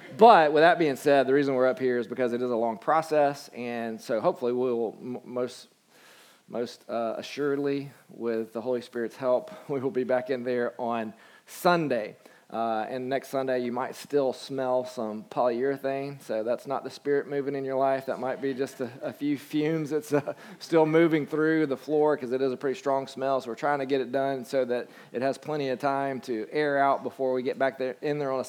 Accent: American